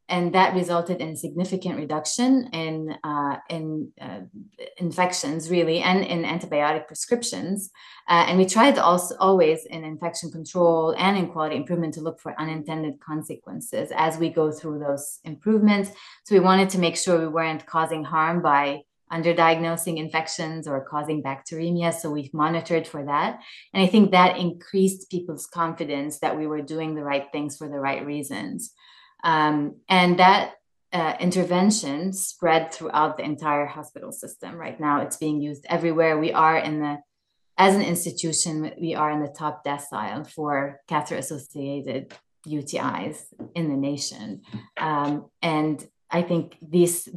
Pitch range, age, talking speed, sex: 150-175 Hz, 20-39, 155 wpm, female